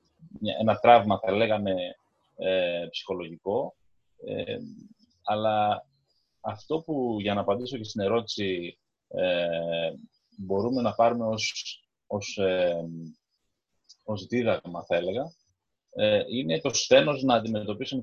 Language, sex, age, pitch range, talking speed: Greek, male, 30-49, 95-125 Hz, 90 wpm